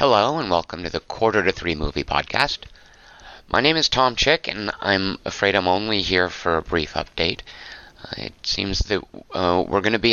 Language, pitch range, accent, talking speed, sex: English, 90-105 Hz, American, 200 wpm, male